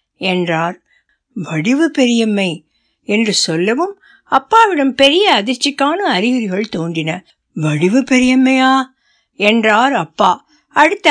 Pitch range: 205-290 Hz